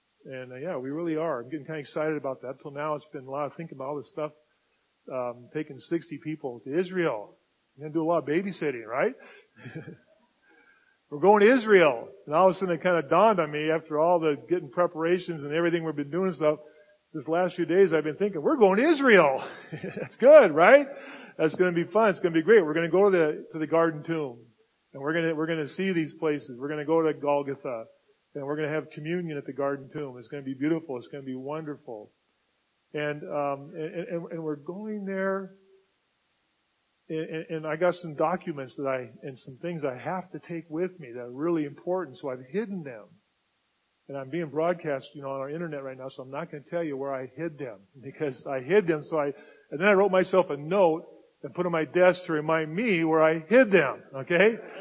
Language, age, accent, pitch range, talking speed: English, 40-59, American, 145-180 Hz, 230 wpm